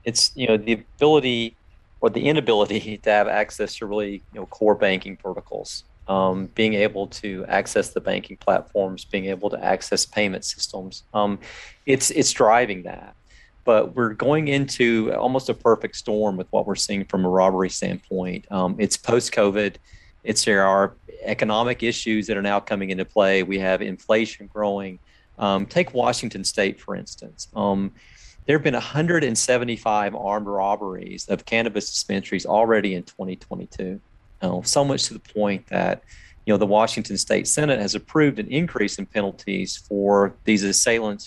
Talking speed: 160 wpm